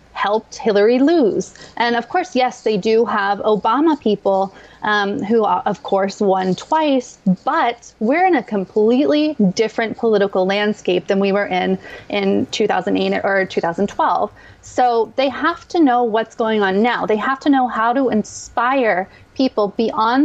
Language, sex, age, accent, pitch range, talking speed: English, female, 30-49, American, 200-260 Hz, 155 wpm